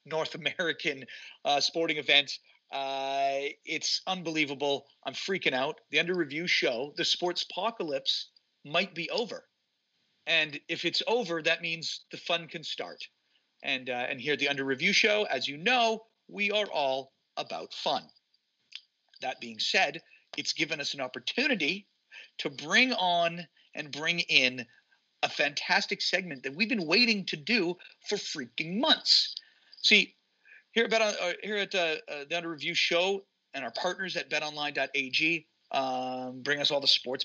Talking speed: 150 wpm